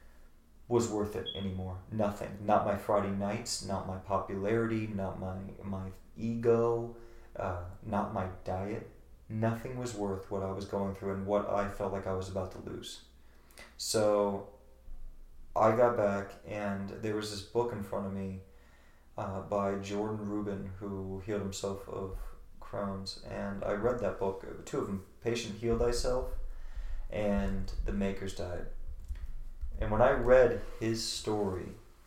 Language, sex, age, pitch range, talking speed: English, male, 30-49, 95-105 Hz, 150 wpm